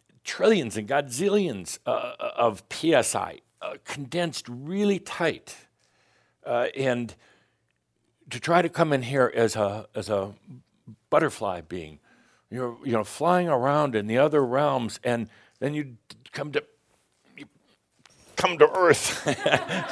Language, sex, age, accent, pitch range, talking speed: English, male, 60-79, American, 110-165 Hz, 125 wpm